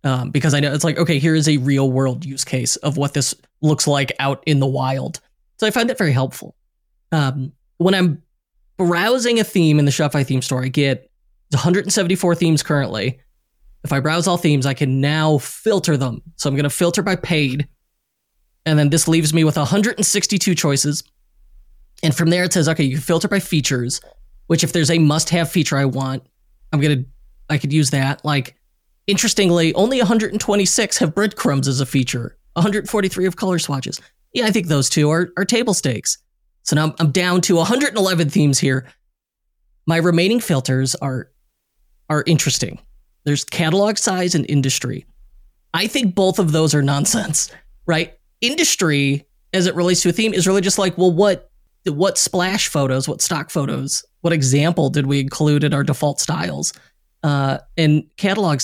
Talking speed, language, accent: 180 wpm, English, American